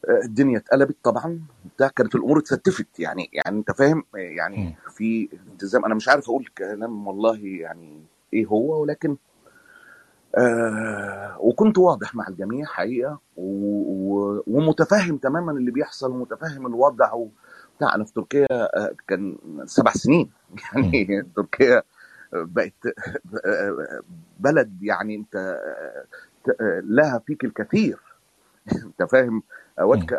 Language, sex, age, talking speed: Arabic, male, 30-49, 105 wpm